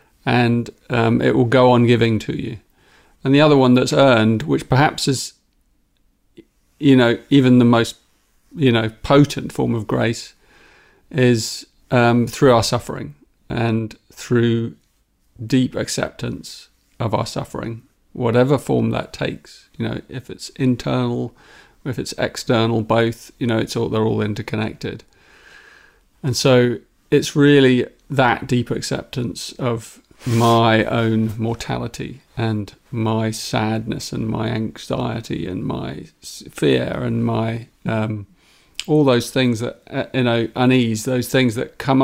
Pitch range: 110-130 Hz